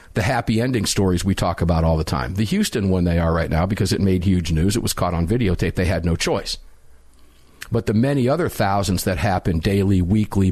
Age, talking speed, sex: 50-69, 230 wpm, male